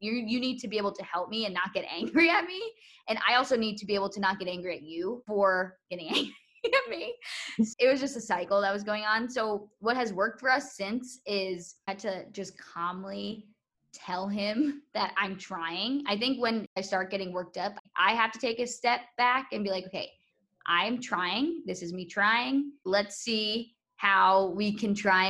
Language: English